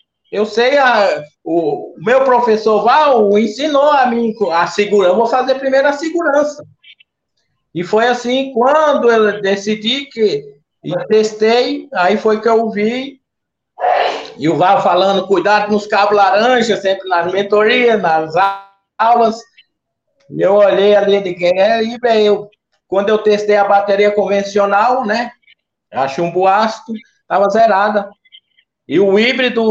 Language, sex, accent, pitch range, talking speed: Portuguese, male, Brazilian, 160-225 Hz, 140 wpm